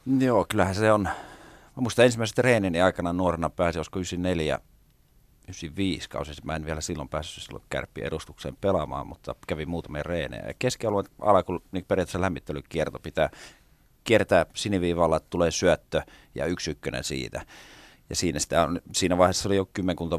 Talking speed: 150 wpm